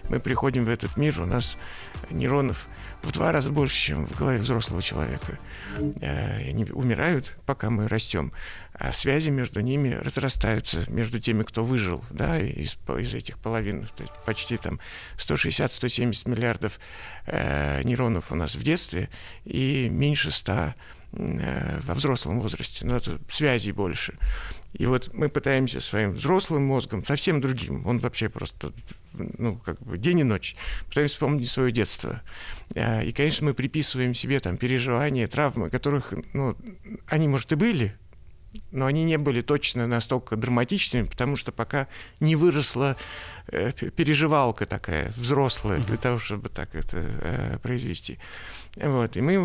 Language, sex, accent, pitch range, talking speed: Russian, male, native, 110-145 Hz, 140 wpm